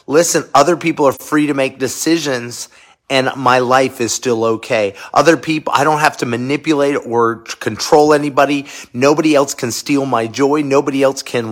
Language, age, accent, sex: English, 40-59, American, male